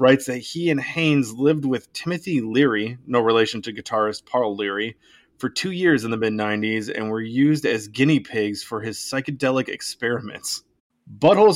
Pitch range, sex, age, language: 115-150 Hz, male, 20-39, English